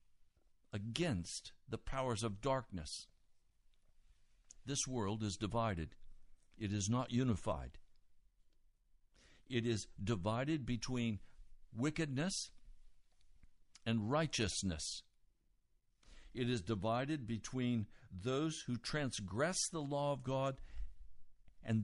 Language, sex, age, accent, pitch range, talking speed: English, male, 60-79, American, 100-145 Hz, 90 wpm